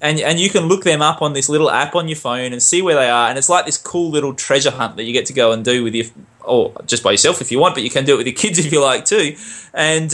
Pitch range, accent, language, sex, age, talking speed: 120-155 Hz, Australian, English, male, 20-39, 335 wpm